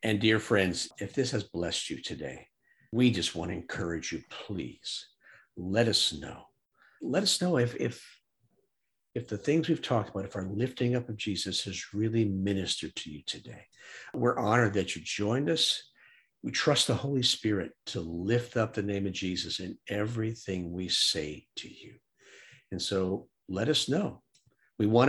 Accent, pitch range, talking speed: American, 95-120 Hz, 175 wpm